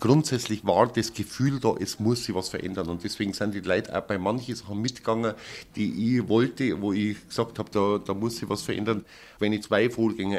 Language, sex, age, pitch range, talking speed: German, male, 50-69, 95-110 Hz, 215 wpm